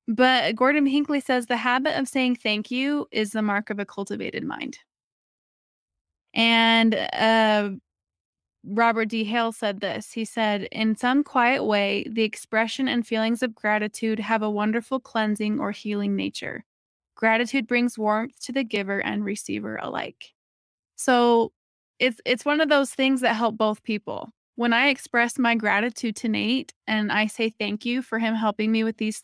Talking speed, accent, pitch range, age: 165 wpm, American, 220-255 Hz, 20-39